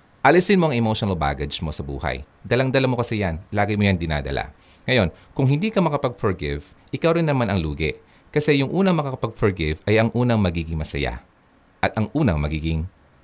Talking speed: 175 wpm